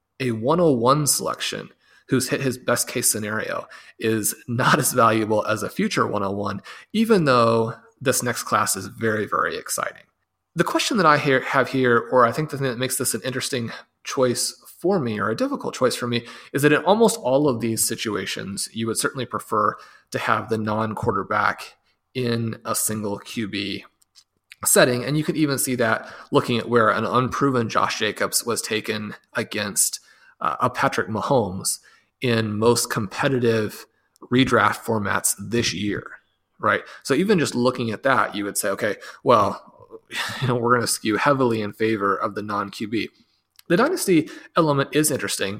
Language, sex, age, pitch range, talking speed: English, male, 30-49, 110-140 Hz, 170 wpm